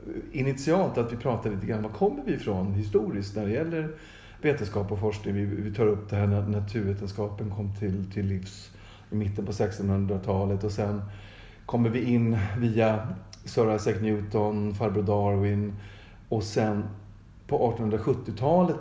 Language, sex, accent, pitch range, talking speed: Swedish, male, native, 100-120 Hz, 155 wpm